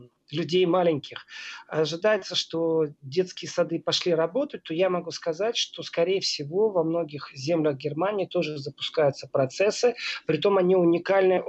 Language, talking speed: Russian, 130 wpm